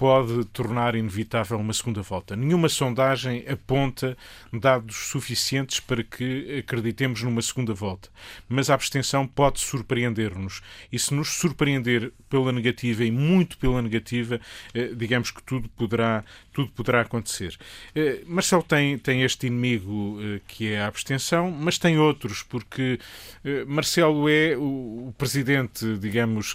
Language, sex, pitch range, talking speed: Portuguese, male, 110-135 Hz, 130 wpm